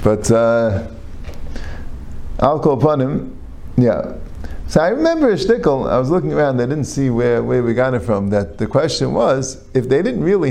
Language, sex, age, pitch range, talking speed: English, male, 50-69, 95-130 Hz, 190 wpm